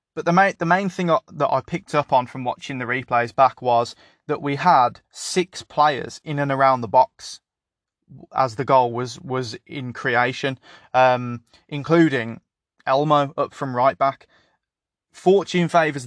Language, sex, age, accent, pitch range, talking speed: English, male, 20-39, British, 125-145 Hz, 150 wpm